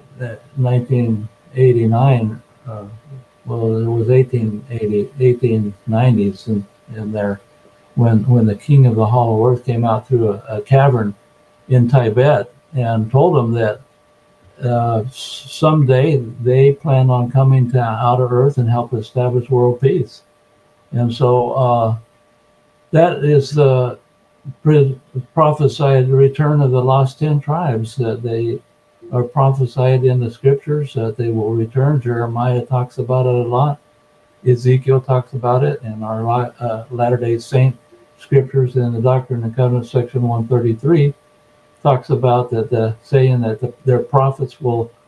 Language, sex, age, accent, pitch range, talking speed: English, male, 60-79, American, 120-140 Hz, 135 wpm